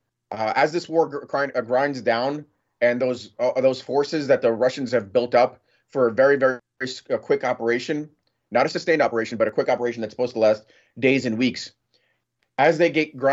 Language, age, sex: English, 30-49, male